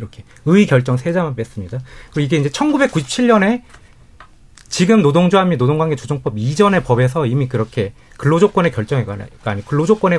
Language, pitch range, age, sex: Korean, 125-190 Hz, 30-49, male